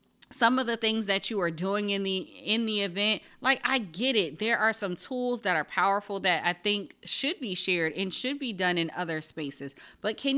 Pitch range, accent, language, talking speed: 170-220 Hz, American, English, 225 wpm